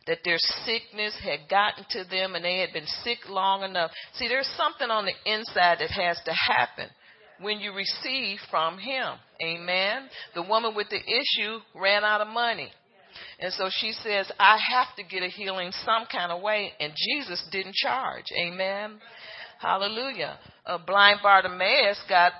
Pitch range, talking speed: 180-225 Hz, 170 wpm